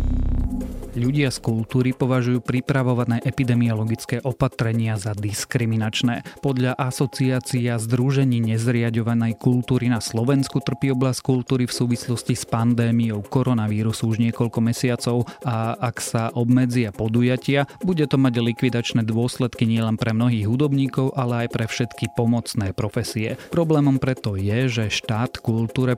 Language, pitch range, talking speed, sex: Slovak, 110-130 Hz, 120 wpm, male